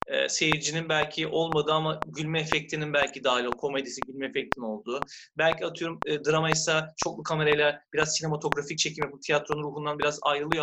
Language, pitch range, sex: Turkish, 140-180 Hz, male